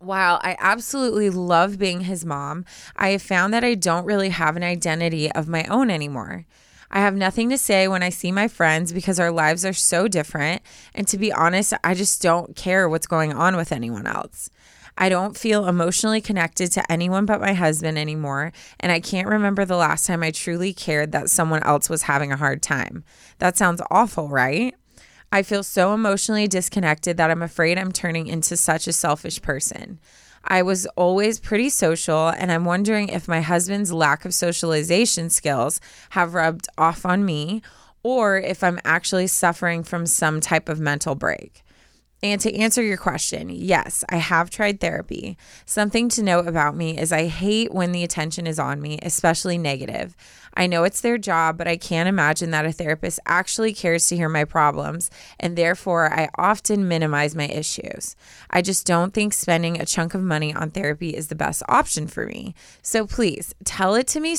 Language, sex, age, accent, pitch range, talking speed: English, female, 20-39, American, 160-195 Hz, 190 wpm